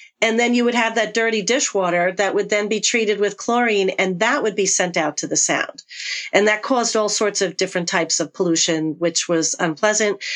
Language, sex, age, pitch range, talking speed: English, female, 40-59, 185-240 Hz, 215 wpm